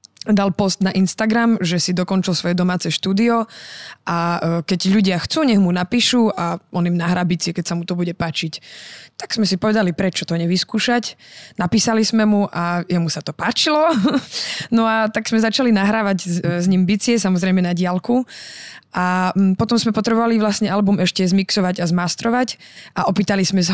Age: 20-39